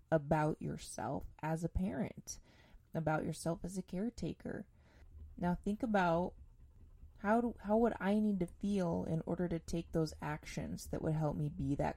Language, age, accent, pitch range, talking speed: English, 20-39, American, 150-185 Hz, 160 wpm